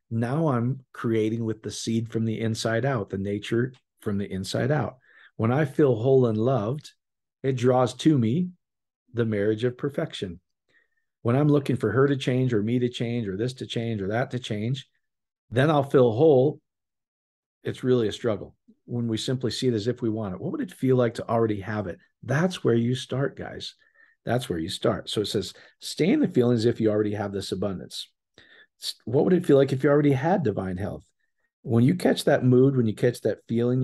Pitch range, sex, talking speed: 110-135 Hz, male, 210 wpm